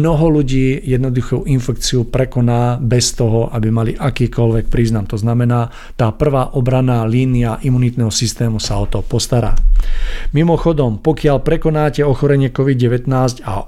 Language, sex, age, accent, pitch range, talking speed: Czech, male, 50-69, native, 120-145 Hz, 125 wpm